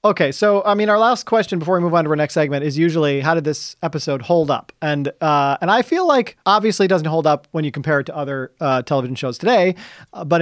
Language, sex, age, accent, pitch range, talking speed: English, male, 40-59, American, 140-180 Hz, 265 wpm